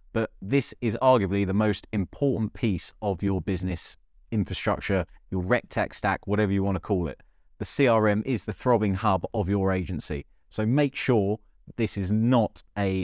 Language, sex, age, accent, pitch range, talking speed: English, male, 30-49, British, 95-115 Hz, 170 wpm